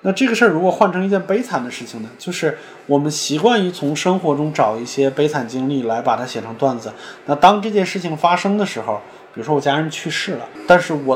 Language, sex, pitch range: Chinese, male, 135-200 Hz